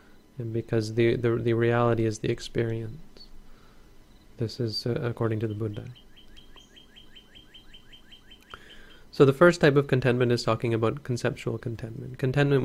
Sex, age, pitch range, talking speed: male, 30-49, 115-130 Hz, 135 wpm